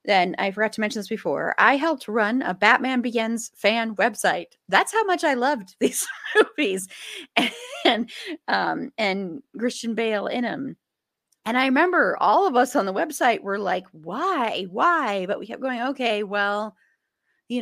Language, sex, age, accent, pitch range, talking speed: English, female, 30-49, American, 185-245 Hz, 170 wpm